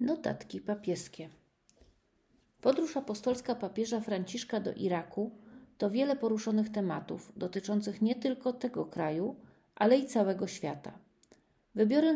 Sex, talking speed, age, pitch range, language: female, 110 wpm, 40-59, 195-240 Hz, Polish